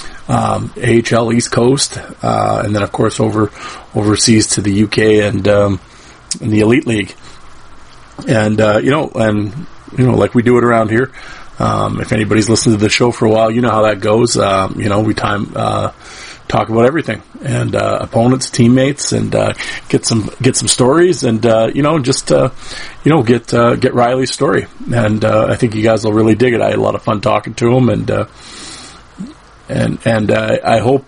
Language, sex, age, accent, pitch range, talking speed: English, male, 40-59, American, 110-125 Hz, 205 wpm